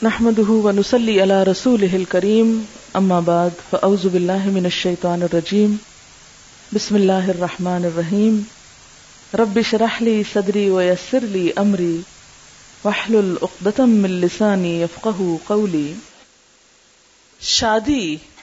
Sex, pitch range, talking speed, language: female, 185-230 Hz, 105 wpm, Urdu